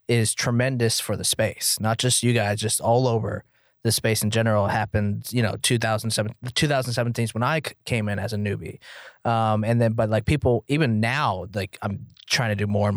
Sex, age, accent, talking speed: male, 20-39, American, 215 wpm